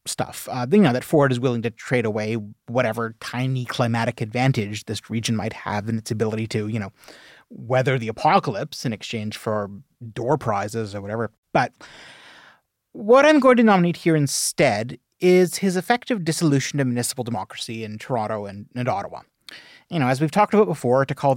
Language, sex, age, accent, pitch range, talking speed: English, male, 30-49, American, 110-155 Hz, 180 wpm